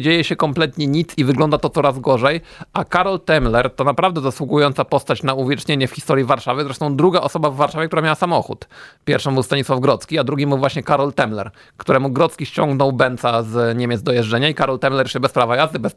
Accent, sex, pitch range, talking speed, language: native, male, 135-175 Hz, 205 wpm, Polish